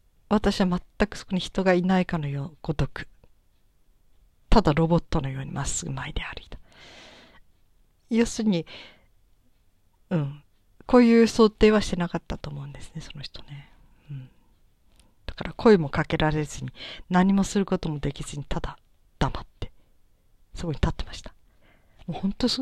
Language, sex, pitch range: Japanese, female, 145-190 Hz